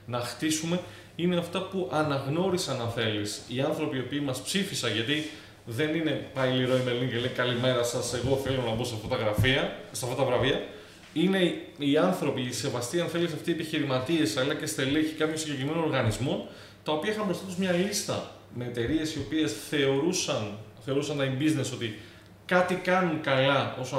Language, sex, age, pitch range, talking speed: Greek, male, 20-39, 120-170 Hz, 180 wpm